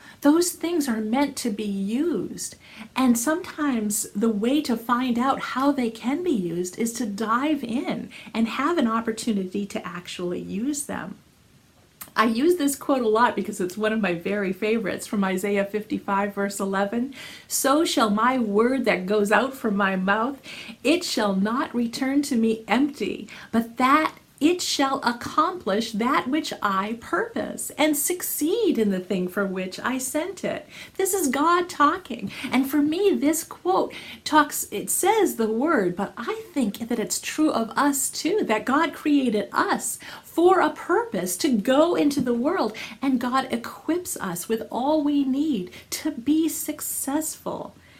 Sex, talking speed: female, 165 wpm